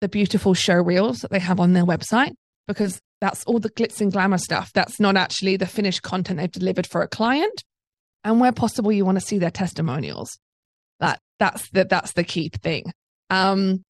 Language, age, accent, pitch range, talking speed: English, 20-39, British, 190-240 Hz, 200 wpm